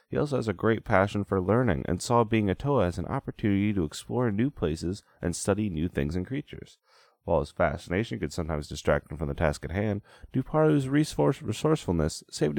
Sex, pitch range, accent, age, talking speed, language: male, 80-120 Hz, American, 30-49, 195 wpm, English